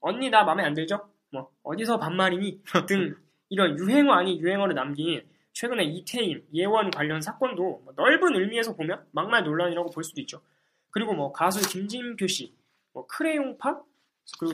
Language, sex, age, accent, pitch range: Korean, male, 20-39, native, 160-235 Hz